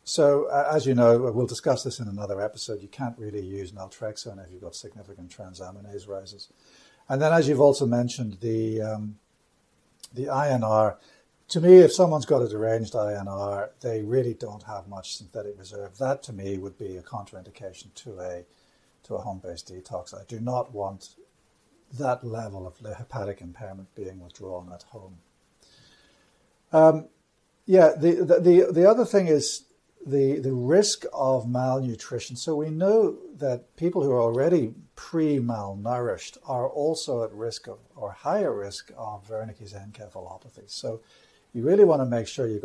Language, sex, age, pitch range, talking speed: English, male, 60-79, 100-135 Hz, 165 wpm